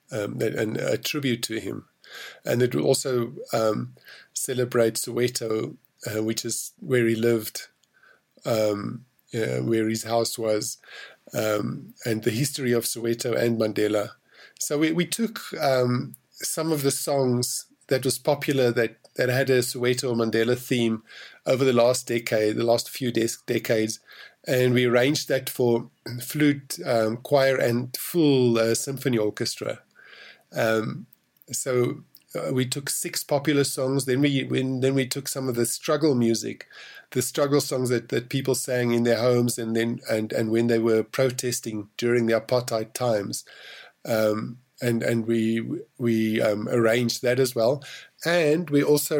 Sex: male